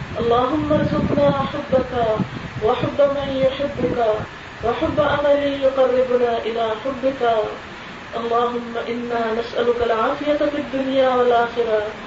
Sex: female